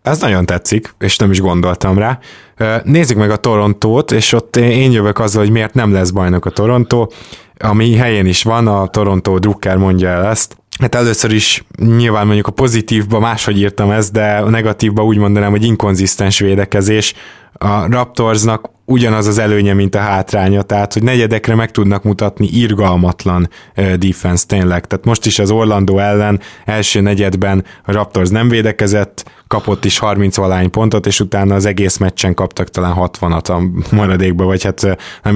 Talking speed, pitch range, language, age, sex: 165 wpm, 95-110 Hz, Hungarian, 20-39, male